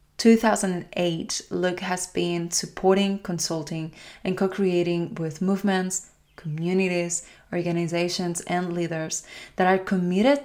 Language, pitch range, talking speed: English, 170-190 Hz, 100 wpm